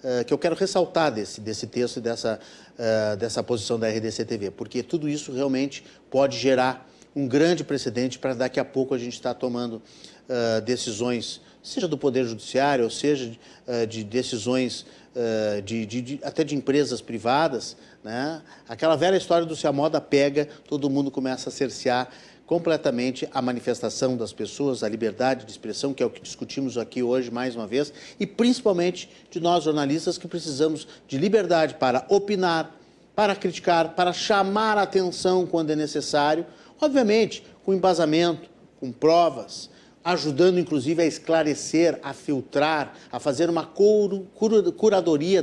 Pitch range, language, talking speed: 125-170 Hz, Portuguese, 145 wpm